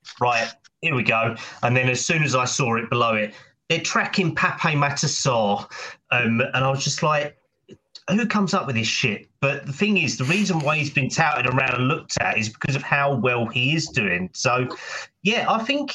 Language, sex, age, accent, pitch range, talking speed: English, male, 30-49, British, 110-150 Hz, 210 wpm